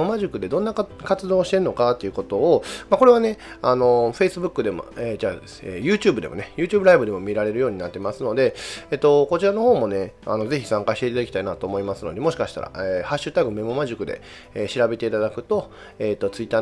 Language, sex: Japanese, male